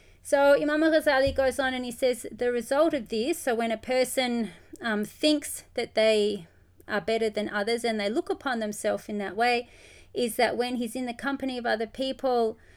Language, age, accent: English, 30-49, Australian